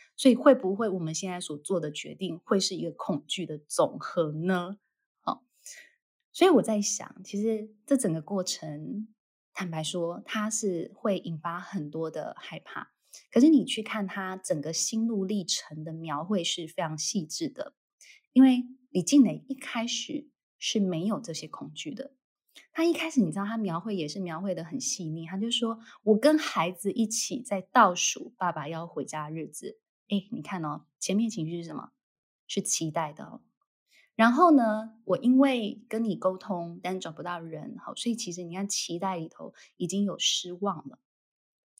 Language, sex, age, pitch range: Chinese, female, 20-39, 175-235 Hz